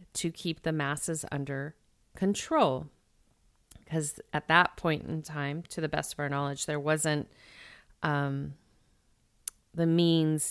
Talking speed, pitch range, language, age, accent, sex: 130 wpm, 150-180 Hz, English, 30-49, American, female